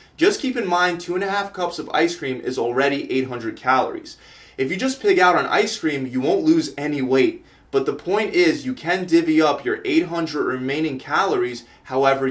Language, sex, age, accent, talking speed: English, male, 20-39, American, 205 wpm